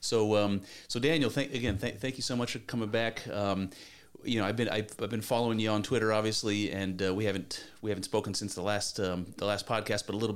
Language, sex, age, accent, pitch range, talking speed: English, male, 30-49, American, 95-110 Hz, 255 wpm